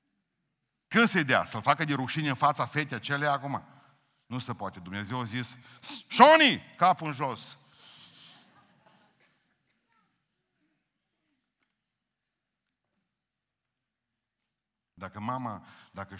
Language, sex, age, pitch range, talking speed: Romanian, male, 50-69, 100-125 Hz, 95 wpm